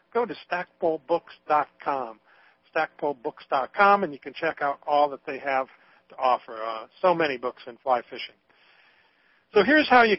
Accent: American